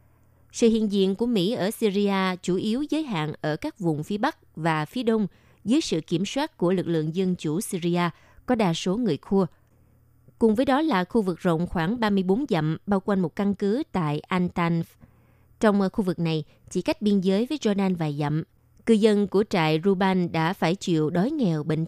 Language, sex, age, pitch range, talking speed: Vietnamese, female, 20-39, 165-215 Hz, 205 wpm